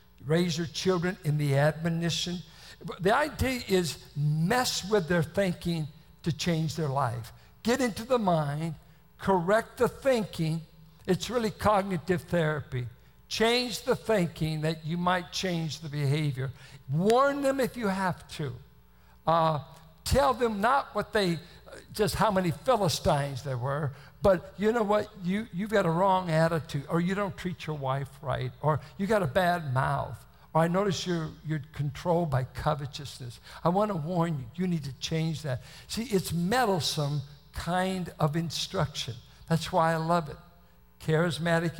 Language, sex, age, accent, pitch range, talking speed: English, male, 60-79, American, 145-185 Hz, 155 wpm